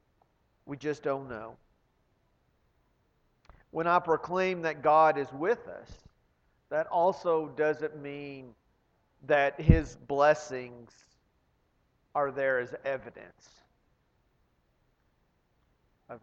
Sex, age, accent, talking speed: male, 40-59, American, 90 wpm